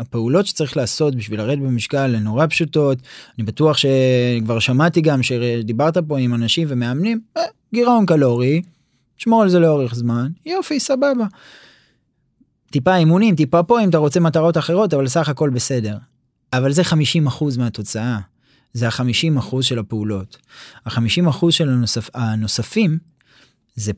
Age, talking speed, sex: 20-39, 135 wpm, male